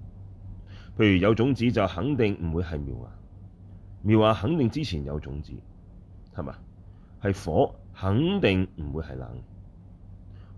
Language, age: Chinese, 30-49